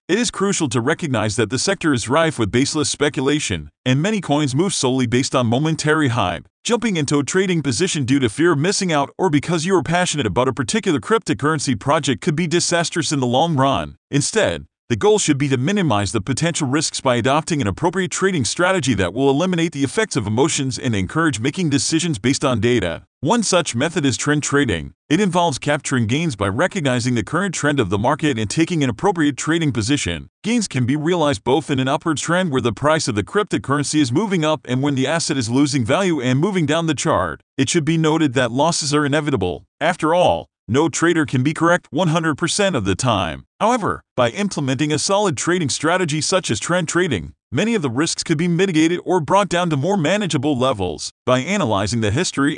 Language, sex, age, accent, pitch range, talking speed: English, male, 40-59, American, 130-175 Hz, 210 wpm